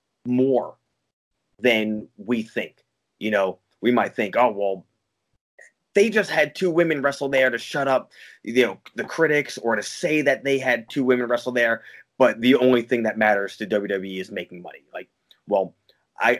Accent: American